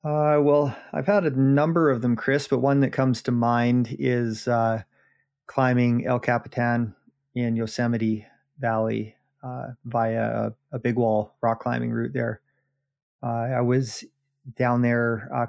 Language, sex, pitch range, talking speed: English, male, 115-135 Hz, 150 wpm